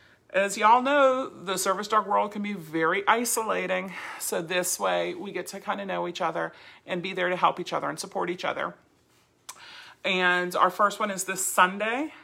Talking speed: 195 wpm